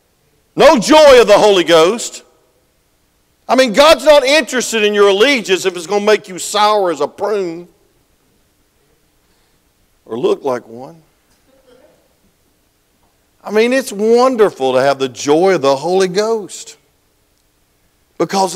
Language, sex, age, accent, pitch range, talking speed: English, male, 50-69, American, 115-190 Hz, 135 wpm